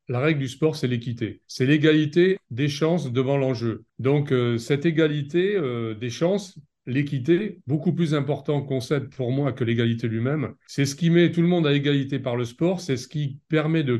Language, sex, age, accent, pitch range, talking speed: French, male, 40-59, French, 125-160 Hz, 195 wpm